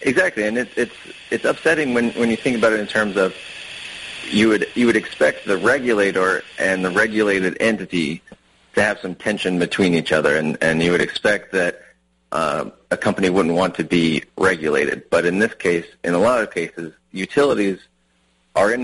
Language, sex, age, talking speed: English, male, 30-49, 190 wpm